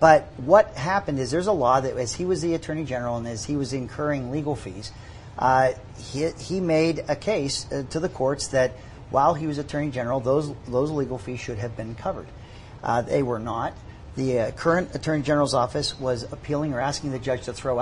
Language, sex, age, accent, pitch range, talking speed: English, male, 50-69, American, 120-150 Hz, 210 wpm